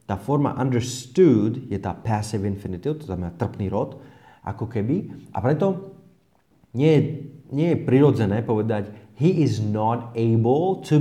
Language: Slovak